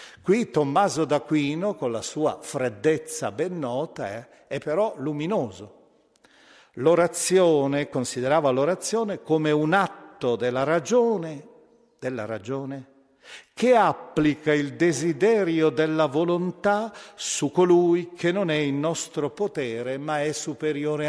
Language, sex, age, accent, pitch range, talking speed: Italian, male, 50-69, native, 125-170 Hz, 115 wpm